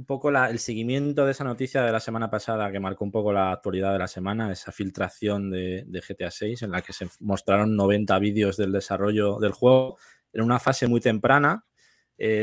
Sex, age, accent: male, 20-39, Spanish